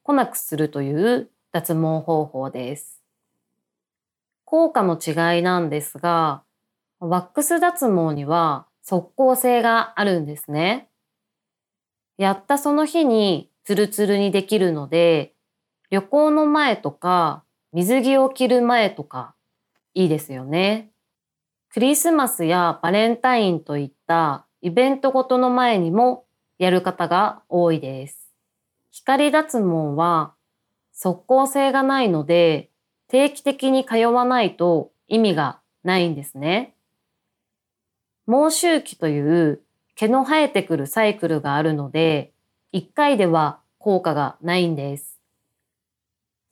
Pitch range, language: 160-245 Hz, Japanese